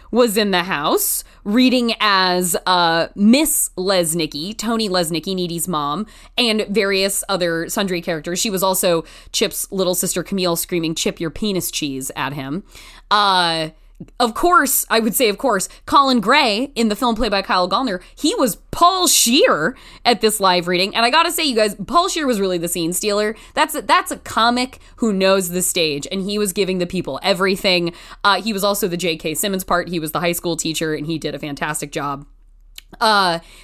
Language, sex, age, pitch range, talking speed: English, female, 20-39, 170-220 Hz, 195 wpm